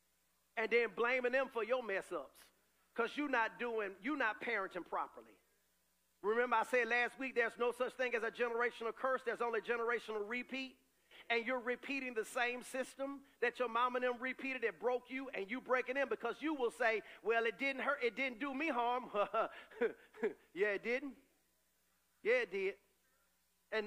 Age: 40-59